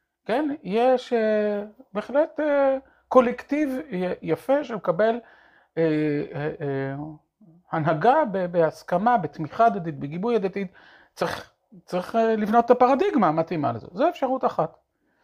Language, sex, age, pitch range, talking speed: Hebrew, male, 40-59, 150-240 Hz, 115 wpm